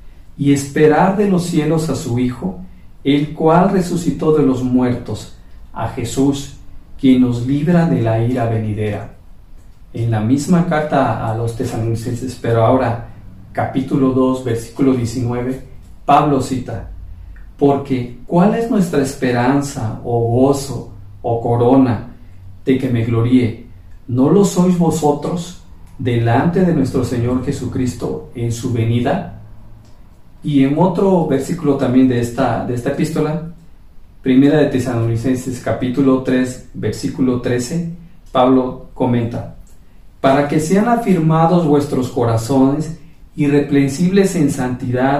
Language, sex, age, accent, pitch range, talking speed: Spanish, male, 40-59, Mexican, 115-145 Hz, 120 wpm